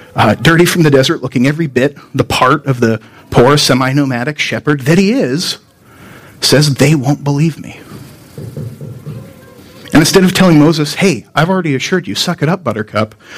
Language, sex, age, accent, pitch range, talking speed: English, male, 40-59, American, 115-150 Hz, 165 wpm